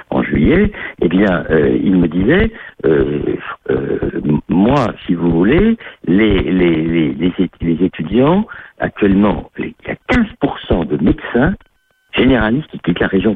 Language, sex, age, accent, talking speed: French, male, 60-79, French, 125 wpm